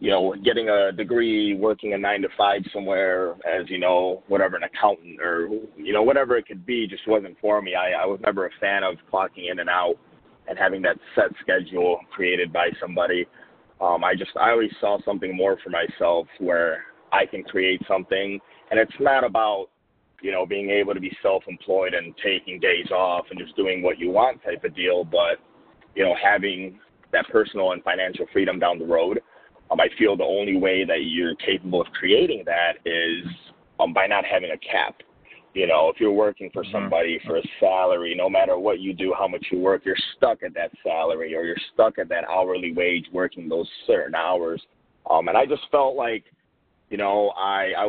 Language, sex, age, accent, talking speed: English, male, 30-49, American, 205 wpm